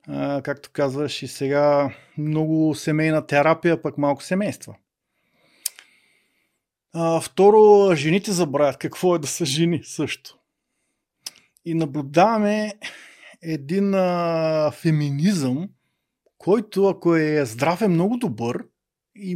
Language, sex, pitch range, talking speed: Bulgarian, male, 145-185 Hz, 105 wpm